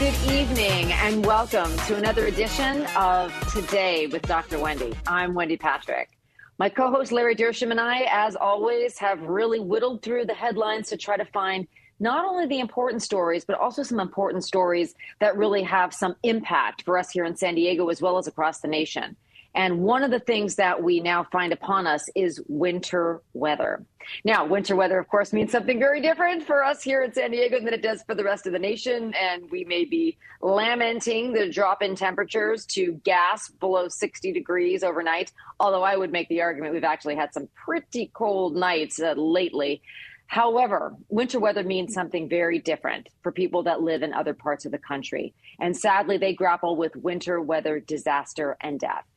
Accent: American